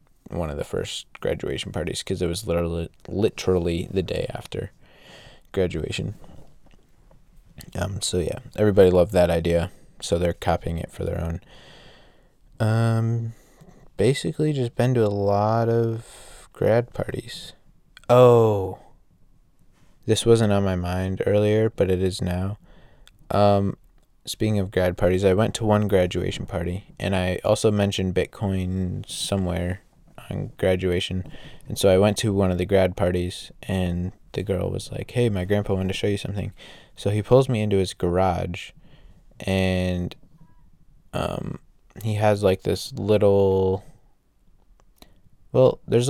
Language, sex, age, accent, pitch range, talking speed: English, male, 20-39, American, 90-110 Hz, 140 wpm